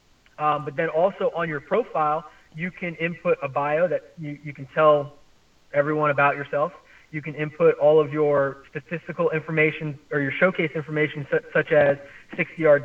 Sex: male